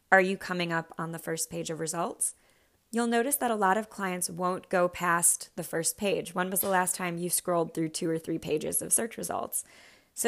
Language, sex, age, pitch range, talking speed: English, female, 20-39, 165-185 Hz, 230 wpm